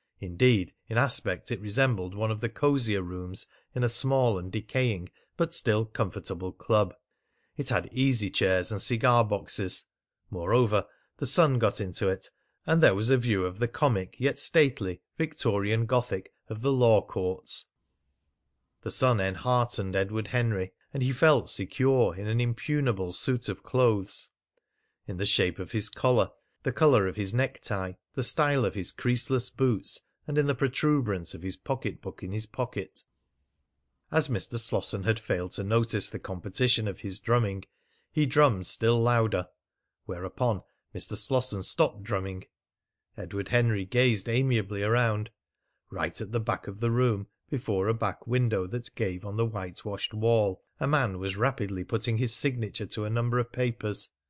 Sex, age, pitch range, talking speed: male, 40-59, 95-125 Hz, 160 wpm